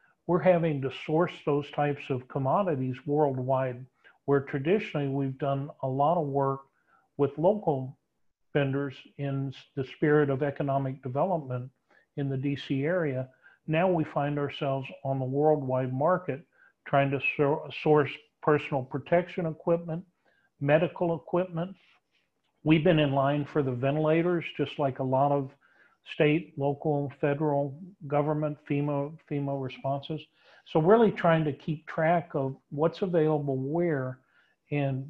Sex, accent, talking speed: male, American, 130 wpm